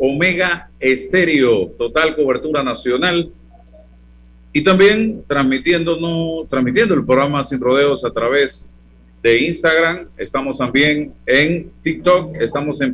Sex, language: male, Spanish